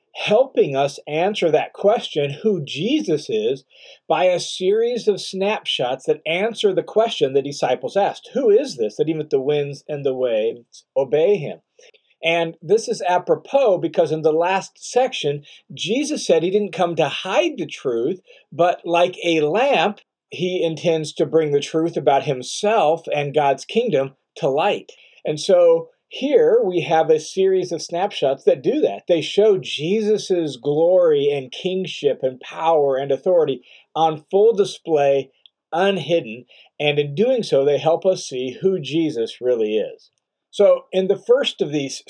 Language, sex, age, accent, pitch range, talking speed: English, male, 40-59, American, 155-250 Hz, 160 wpm